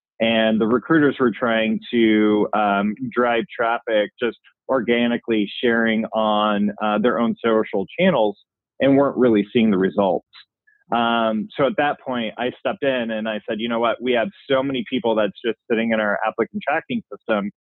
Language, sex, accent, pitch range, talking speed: English, male, American, 105-120 Hz, 175 wpm